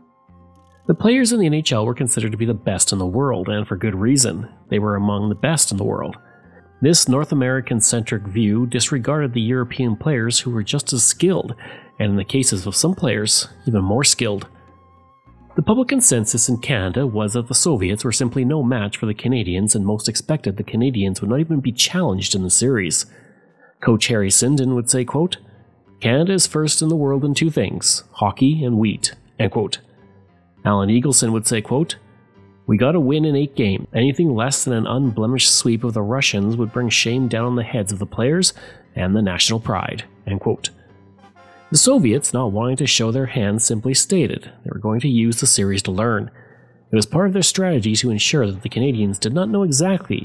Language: English